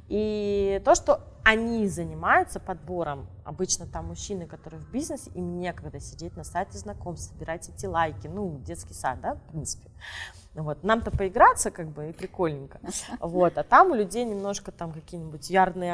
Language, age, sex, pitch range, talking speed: Russian, 20-39, female, 160-210 Hz, 160 wpm